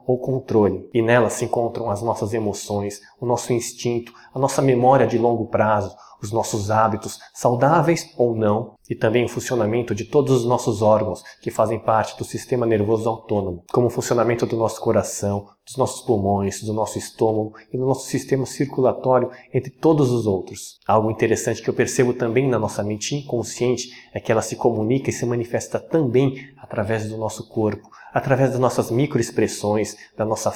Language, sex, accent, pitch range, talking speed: Portuguese, male, Brazilian, 110-130 Hz, 175 wpm